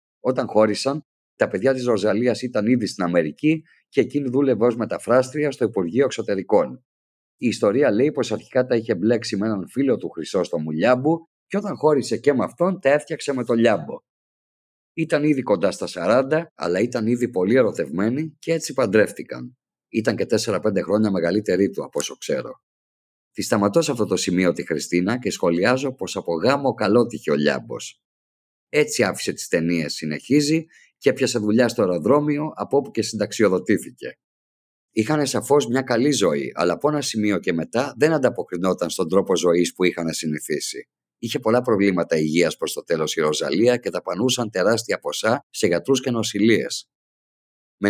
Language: Greek